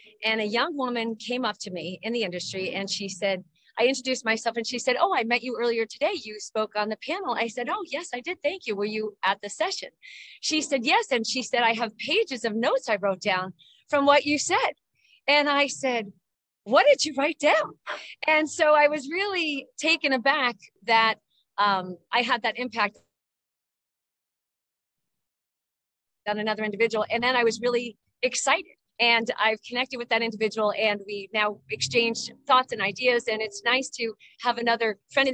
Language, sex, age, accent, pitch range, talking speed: English, female, 40-59, American, 215-285 Hz, 190 wpm